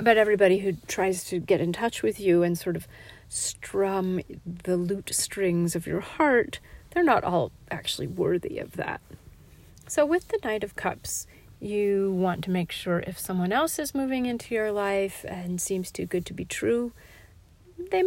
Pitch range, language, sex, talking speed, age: 165-210 Hz, English, female, 180 wpm, 40-59